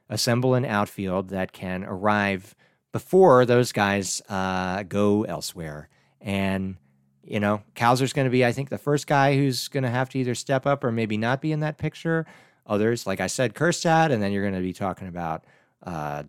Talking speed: 195 wpm